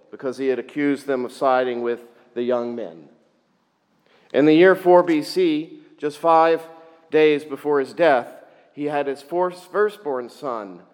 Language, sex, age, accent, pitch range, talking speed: English, male, 50-69, American, 130-170 Hz, 150 wpm